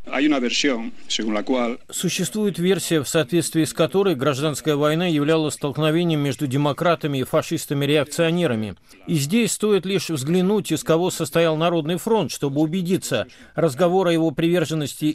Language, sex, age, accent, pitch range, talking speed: Russian, male, 50-69, native, 155-185 Hz, 120 wpm